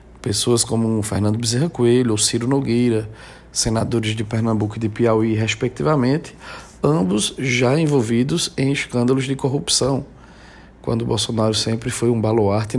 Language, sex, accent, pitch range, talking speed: Portuguese, male, Brazilian, 110-140 Hz, 140 wpm